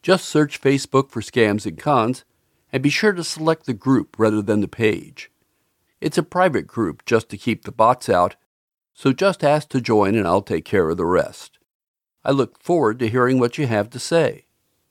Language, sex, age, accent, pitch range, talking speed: English, male, 50-69, American, 120-160 Hz, 200 wpm